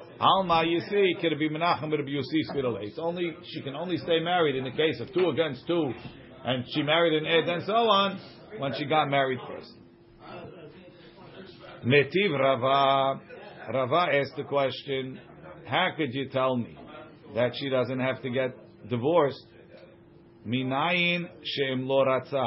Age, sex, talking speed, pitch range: 50-69, male, 125 wpm, 125-165 Hz